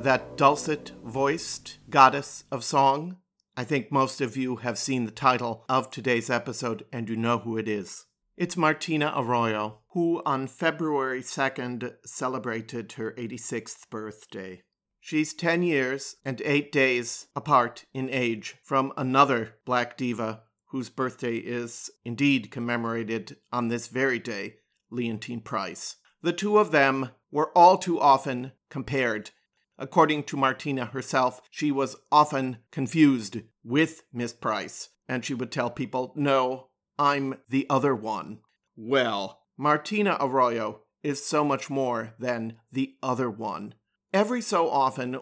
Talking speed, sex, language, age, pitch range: 135 wpm, male, English, 50-69, 120-140 Hz